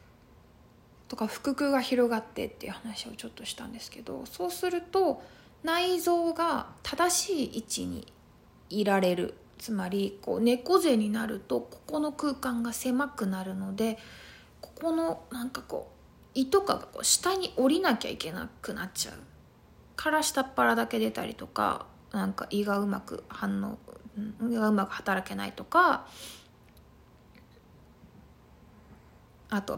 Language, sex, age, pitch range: Japanese, female, 20-39, 210-315 Hz